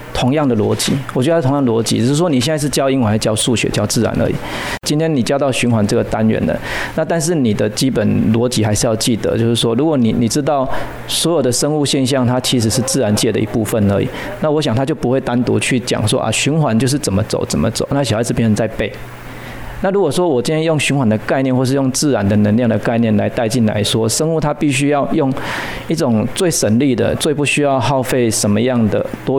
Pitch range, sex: 115-140 Hz, male